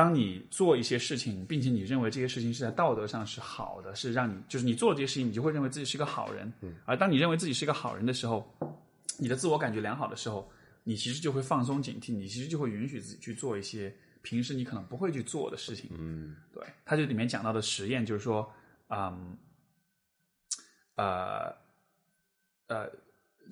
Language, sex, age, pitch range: Chinese, male, 20-39, 110-140 Hz